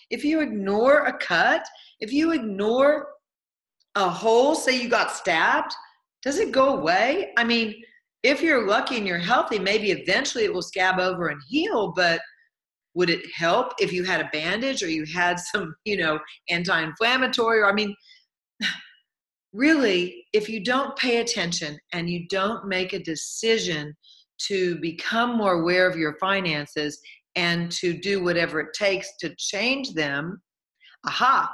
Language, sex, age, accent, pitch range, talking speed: English, female, 40-59, American, 185-290 Hz, 155 wpm